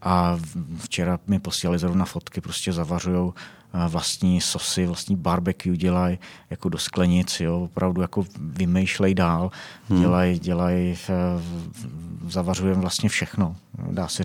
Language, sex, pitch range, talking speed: Czech, male, 90-95 Hz, 120 wpm